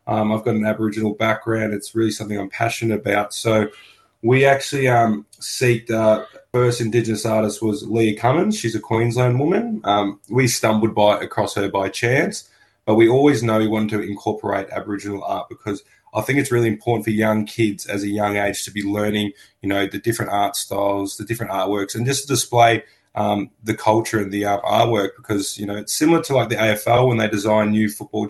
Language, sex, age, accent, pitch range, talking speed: English, male, 20-39, Australian, 105-115 Hz, 200 wpm